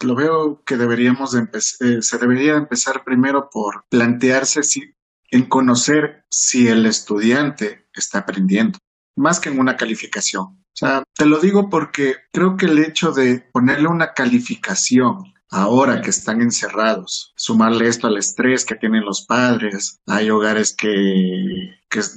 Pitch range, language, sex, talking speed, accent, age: 110-150 Hz, Spanish, male, 145 wpm, Mexican, 50-69